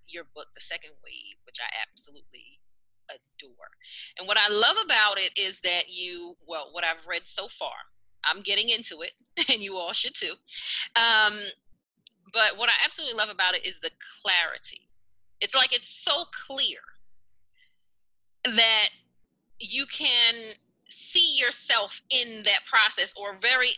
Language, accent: English, American